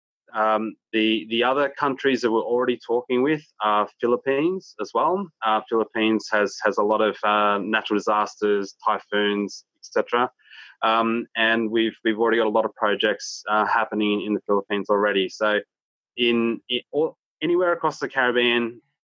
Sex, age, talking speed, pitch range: male, 20-39, 160 wpm, 105-125 Hz